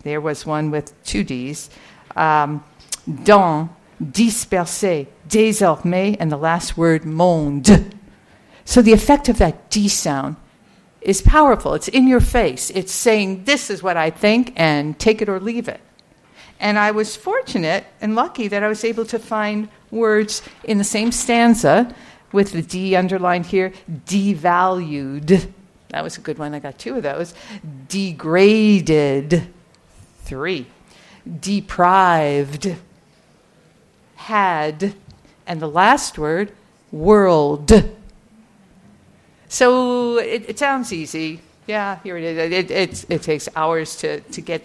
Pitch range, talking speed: 165-220 Hz, 135 wpm